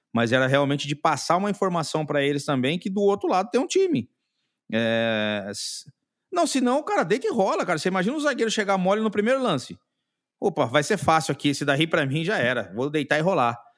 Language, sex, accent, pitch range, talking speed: English, male, Brazilian, 125-195 Hz, 215 wpm